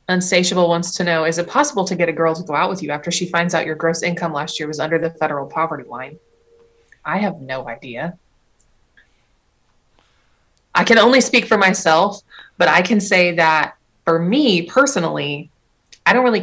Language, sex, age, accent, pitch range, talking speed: English, female, 20-39, American, 155-205 Hz, 190 wpm